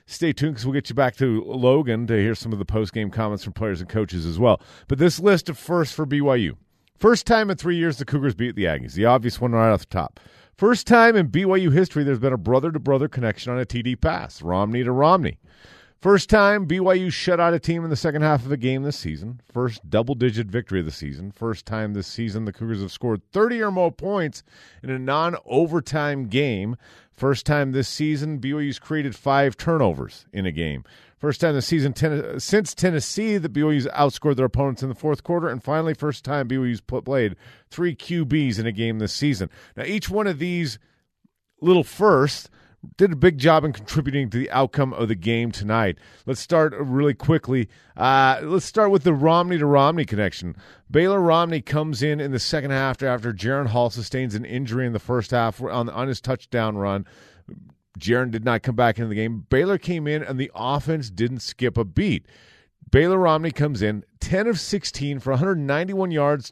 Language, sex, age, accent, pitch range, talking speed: English, male, 40-59, American, 115-160 Hz, 200 wpm